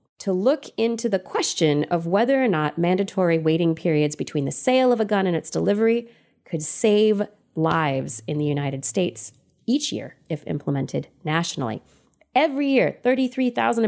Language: English